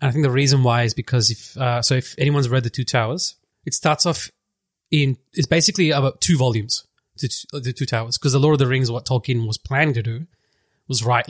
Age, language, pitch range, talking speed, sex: 20-39, English, 120-145 Hz, 250 wpm, male